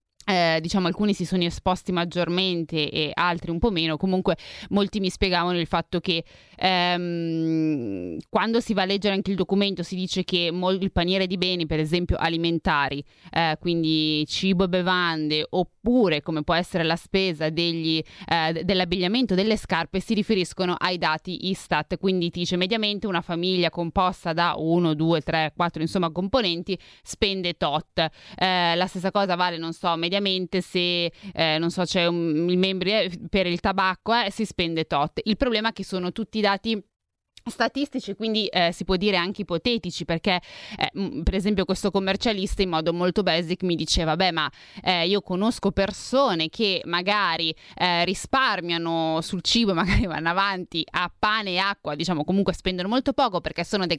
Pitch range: 165-195 Hz